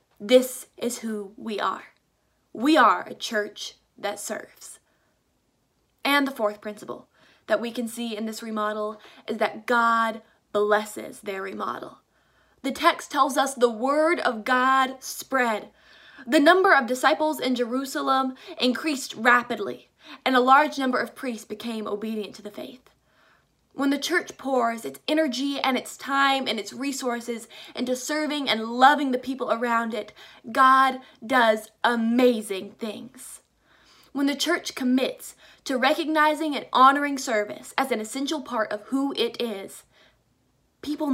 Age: 20-39